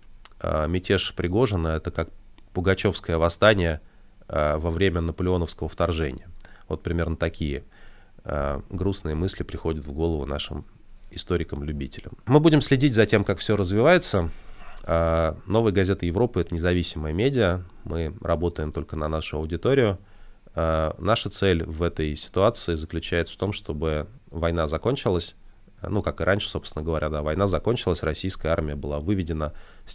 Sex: male